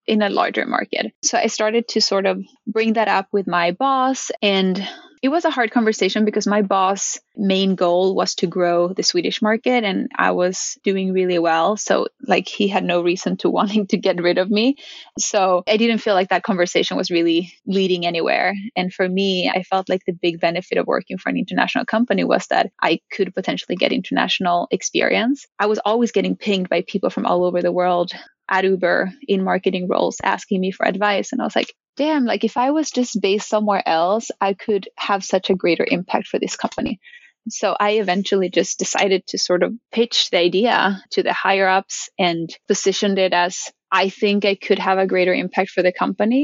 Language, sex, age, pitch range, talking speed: English, female, 20-39, 180-215 Hz, 205 wpm